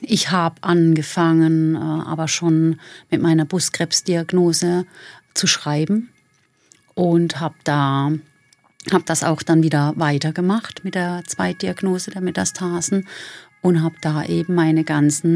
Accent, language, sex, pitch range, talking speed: German, German, female, 160-205 Hz, 110 wpm